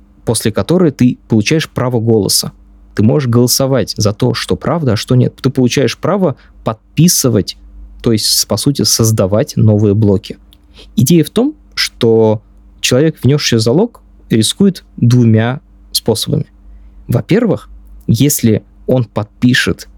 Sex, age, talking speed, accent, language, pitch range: male, 20-39, 125 wpm, native, Russian, 105-130 Hz